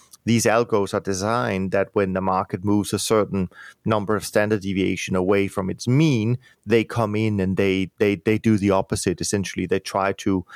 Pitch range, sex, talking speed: 95-115 Hz, male, 190 wpm